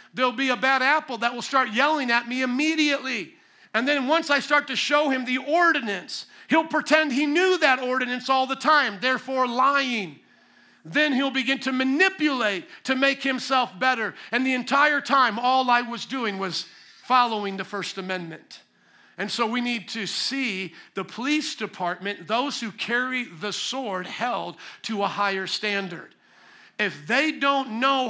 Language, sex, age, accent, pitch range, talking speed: English, male, 50-69, American, 230-280 Hz, 165 wpm